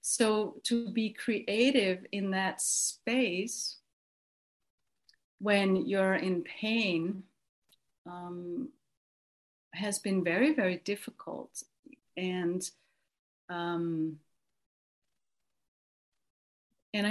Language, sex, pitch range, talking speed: English, female, 185-225 Hz, 70 wpm